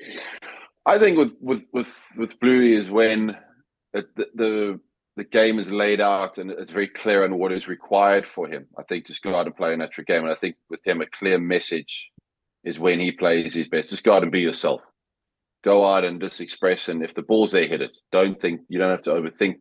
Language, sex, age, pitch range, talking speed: English, male, 30-49, 95-110 Hz, 235 wpm